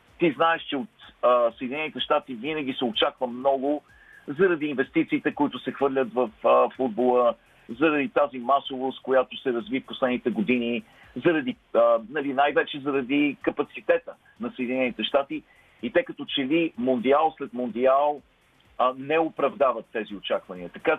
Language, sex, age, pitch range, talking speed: Bulgarian, male, 50-69, 125-155 Hz, 145 wpm